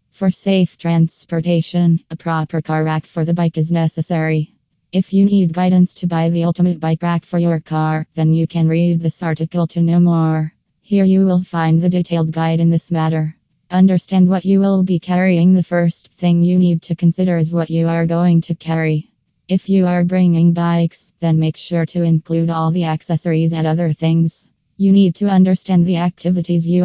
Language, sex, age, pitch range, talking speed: English, female, 20-39, 160-175 Hz, 195 wpm